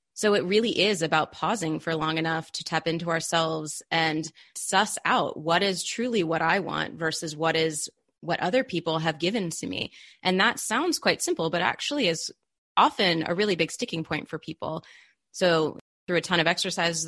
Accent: American